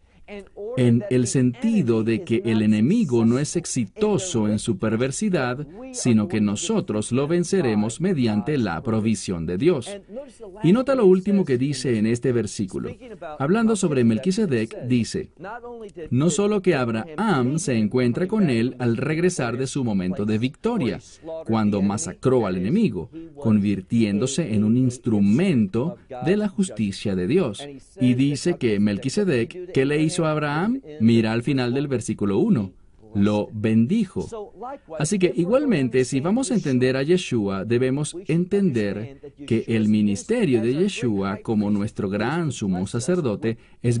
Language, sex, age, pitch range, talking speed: English, male, 40-59, 110-180 Hz, 140 wpm